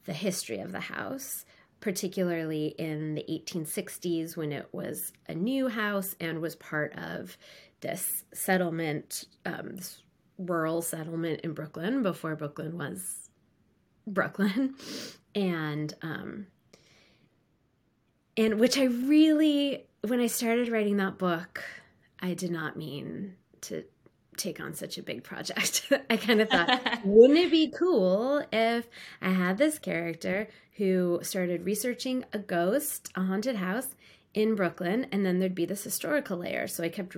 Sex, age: female, 20-39